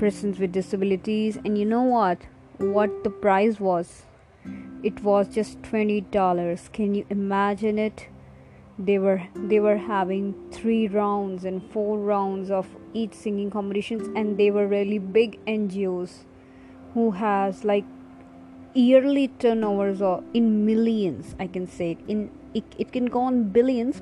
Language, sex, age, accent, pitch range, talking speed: English, female, 20-39, Indian, 180-215 Hz, 145 wpm